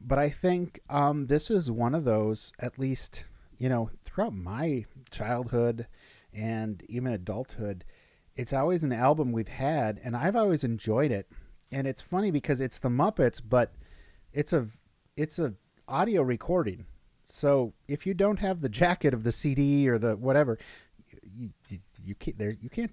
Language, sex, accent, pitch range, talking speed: English, male, American, 110-135 Hz, 155 wpm